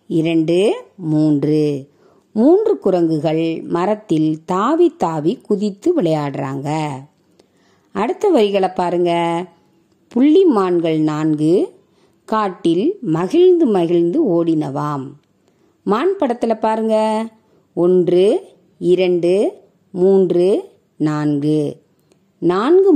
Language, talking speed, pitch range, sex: Tamil, 70 wpm, 160-225 Hz, female